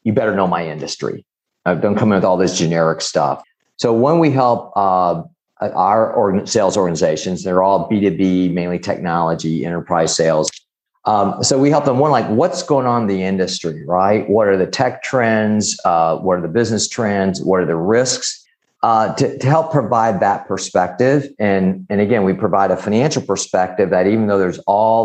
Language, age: English, 50-69